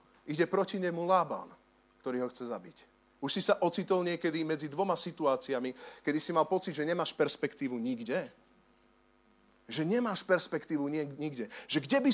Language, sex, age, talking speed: Slovak, male, 40-59, 155 wpm